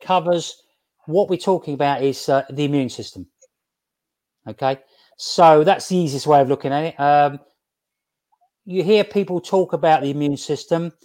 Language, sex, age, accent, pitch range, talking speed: English, male, 40-59, British, 140-180 Hz, 160 wpm